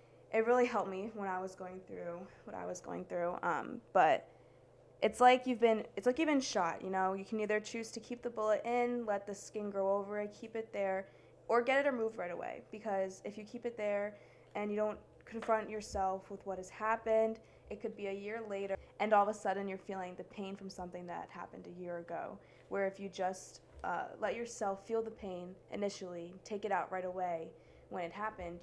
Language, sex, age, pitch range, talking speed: English, female, 20-39, 185-220 Hz, 225 wpm